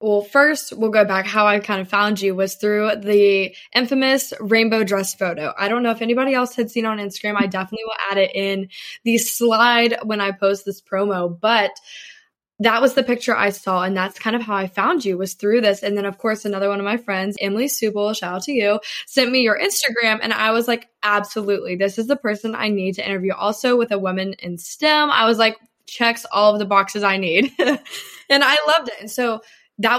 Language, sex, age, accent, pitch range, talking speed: English, female, 10-29, American, 195-230 Hz, 230 wpm